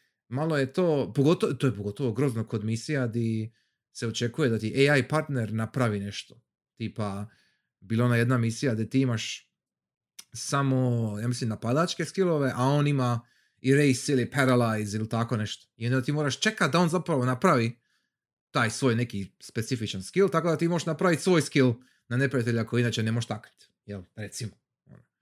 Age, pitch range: 30-49, 115-145 Hz